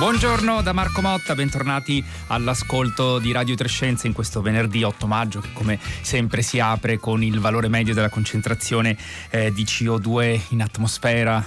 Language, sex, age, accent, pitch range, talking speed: Italian, male, 30-49, native, 100-120 Hz, 160 wpm